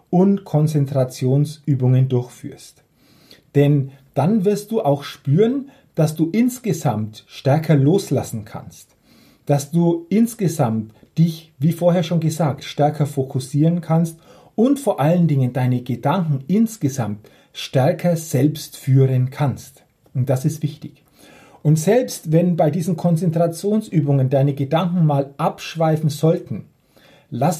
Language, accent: German, German